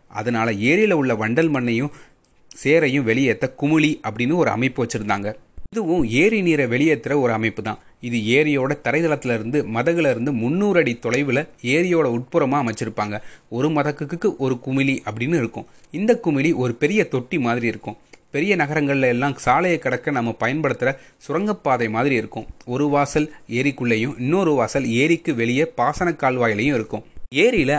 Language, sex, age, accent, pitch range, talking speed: Tamil, male, 30-49, native, 120-150 Hz, 135 wpm